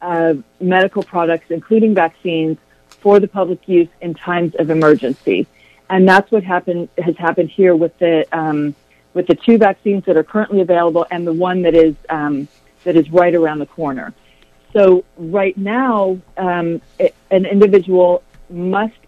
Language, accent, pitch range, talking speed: English, American, 155-185 Hz, 155 wpm